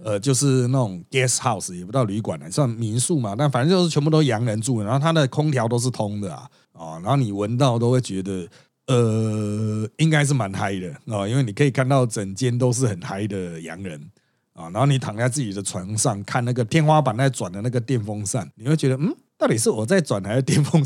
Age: 30-49